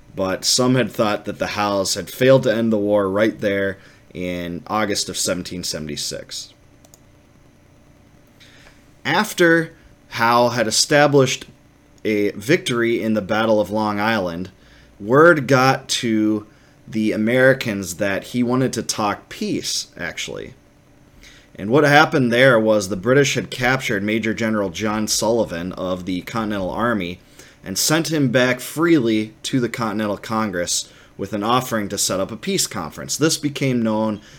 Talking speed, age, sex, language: 140 wpm, 30-49, male, English